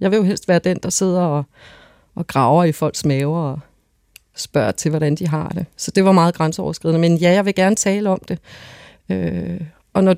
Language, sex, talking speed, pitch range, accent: Danish, female, 220 wpm, 155-195 Hz, native